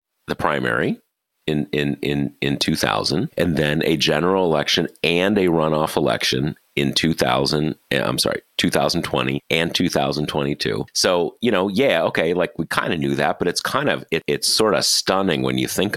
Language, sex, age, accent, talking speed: English, male, 30-49, American, 170 wpm